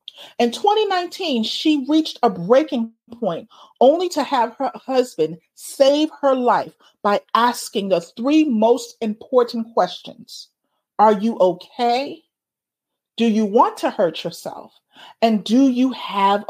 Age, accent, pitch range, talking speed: 40-59, American, 215-285 Hz, 125 wpm